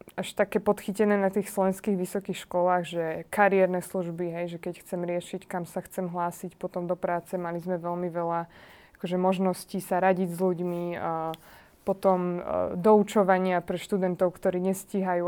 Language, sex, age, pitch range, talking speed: Slovak, female, 20-39, 180-200 Hz, 160 wpm